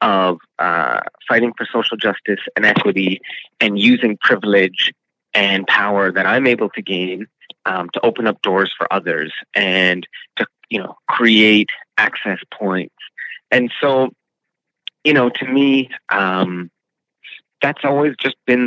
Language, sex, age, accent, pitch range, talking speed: English, male, 30-49, American, 95-120 Hz, 140 wpm